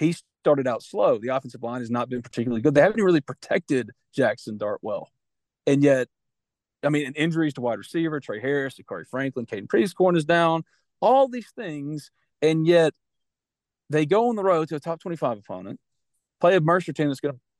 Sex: male